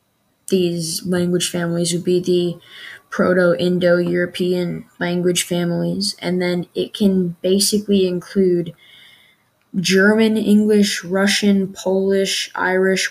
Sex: female